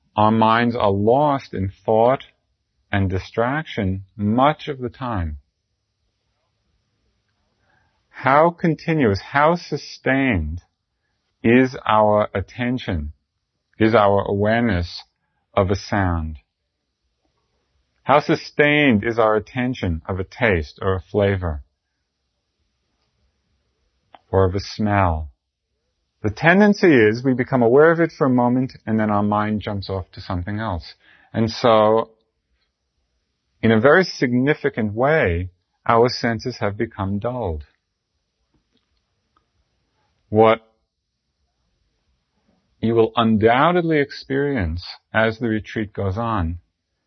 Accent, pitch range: American, 90-120 Hz